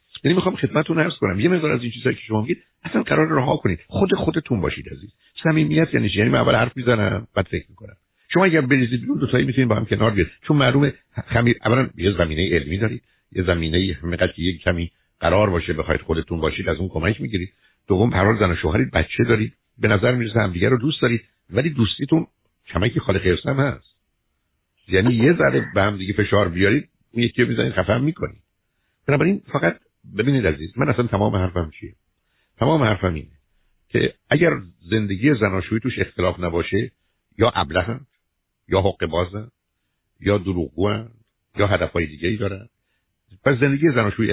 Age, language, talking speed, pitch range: 60-79, Persian, 140 wpm, 90-130 Hz